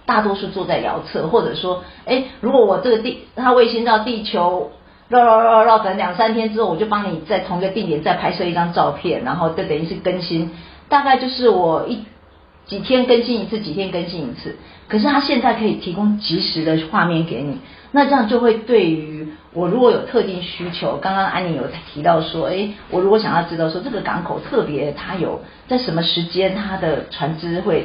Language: Chinese